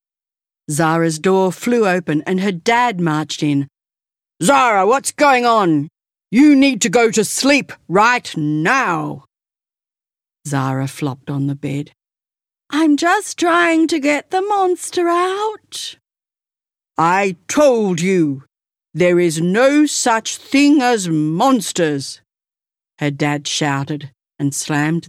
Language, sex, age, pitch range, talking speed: English, female, 60-79, 155-240 Hz, 115 wpm